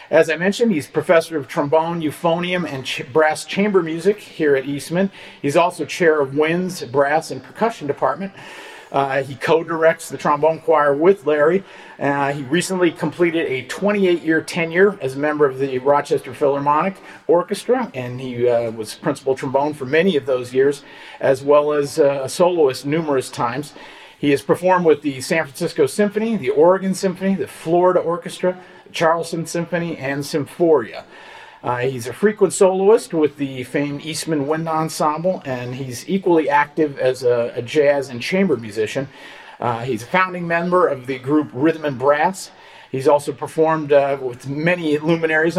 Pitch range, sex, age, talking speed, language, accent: 140-175 Hz, male, 50-69, 165 wpm, English, American